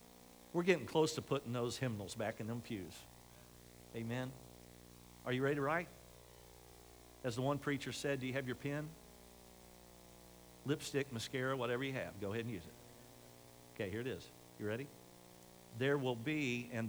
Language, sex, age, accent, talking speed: English, male, 50-69, American, 165 wpm